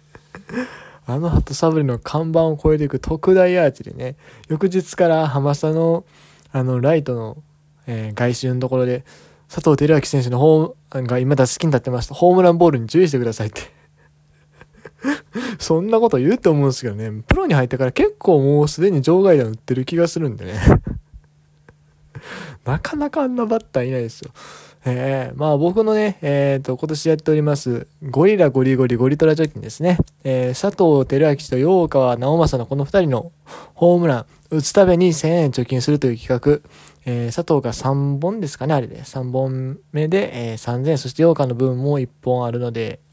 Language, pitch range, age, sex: Japanese, 125-160 Hz, 20-39, male